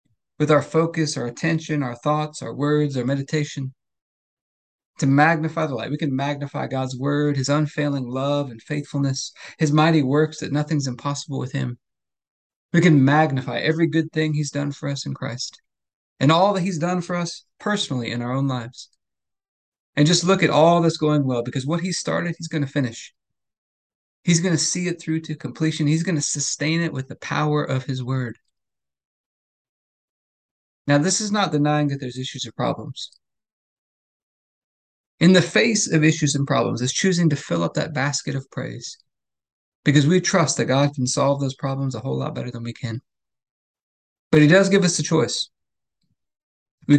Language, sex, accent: English, male, American